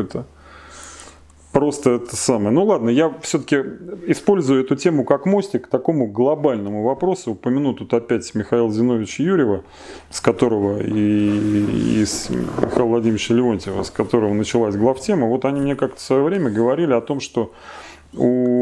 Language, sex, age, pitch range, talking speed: Russian, male, 30-49, 105-140 Hz, 150 wpm